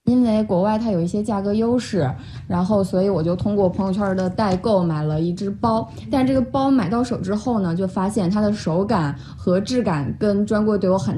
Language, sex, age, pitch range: Chinese, female, 20-39, 195-290 Hz